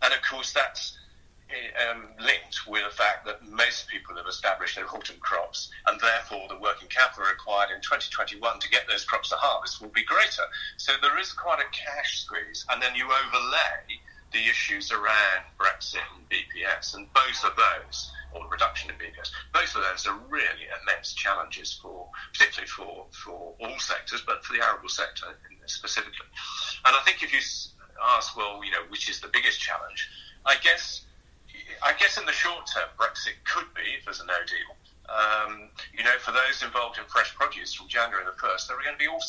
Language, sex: English, male